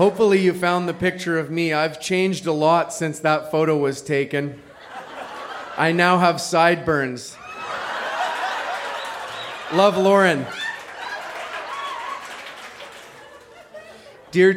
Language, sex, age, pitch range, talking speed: English, male, 30-49, 150-180 Hz, 95 wpm